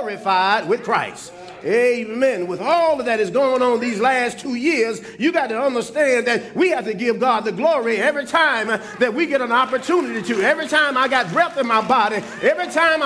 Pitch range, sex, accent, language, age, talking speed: 225-315 Hz, male, American, English, 40-59, 205 wpm